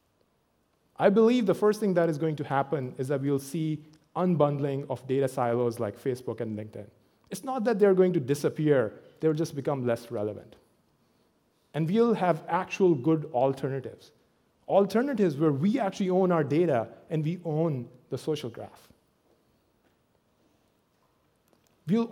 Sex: male